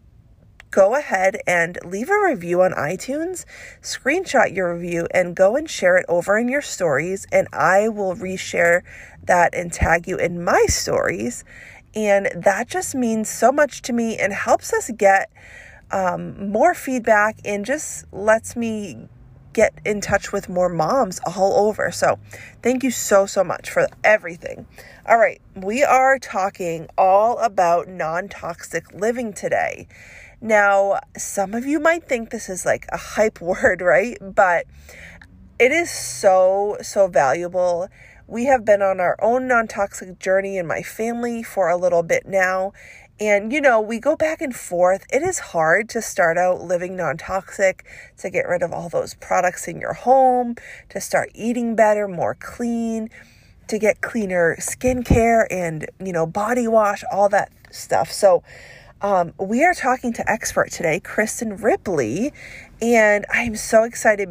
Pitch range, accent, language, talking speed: 185-235 Hz, American, English, 160 wpm